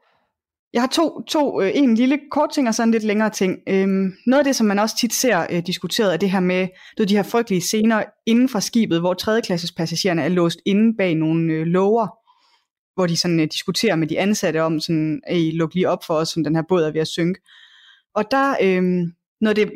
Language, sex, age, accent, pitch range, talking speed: Danish, female, 20-39, native, 165-215 Hz, 220 wpm